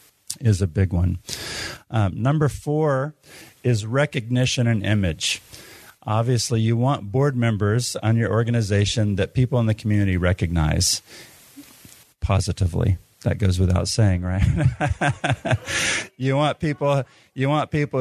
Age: 50-69